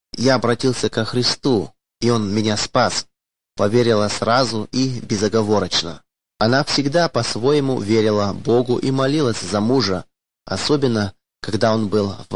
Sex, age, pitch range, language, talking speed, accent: male, 20-39, 100-130 Hz, Russian, 130 wpm, native